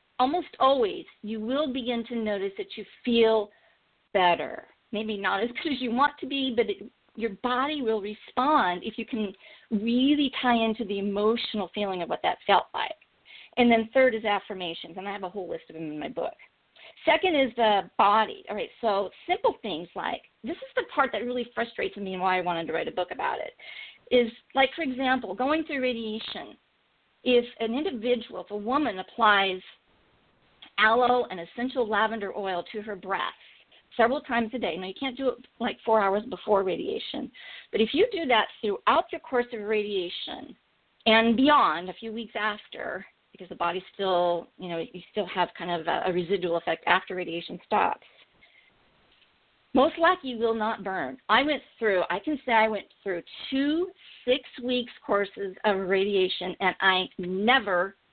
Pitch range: 195-260 Hz